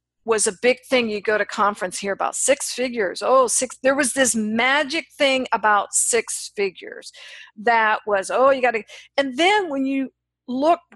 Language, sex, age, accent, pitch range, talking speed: English, female, 50-69, American, 225-290 Hz, 180 wpm